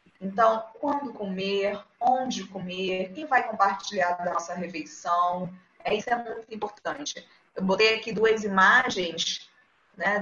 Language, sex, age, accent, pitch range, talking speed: Portuguese, female, 20-39, Brazilian, 175-230 Hz, 130 wpm